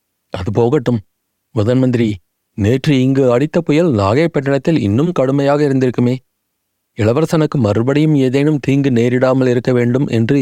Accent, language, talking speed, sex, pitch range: native, Tamil, 110 wpm, male, 110-135 Hz